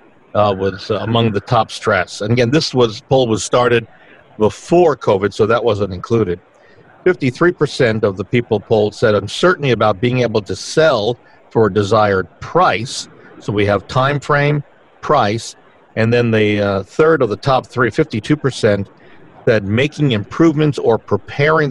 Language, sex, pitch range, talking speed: English, male, 105-135 Hz, 160 wpm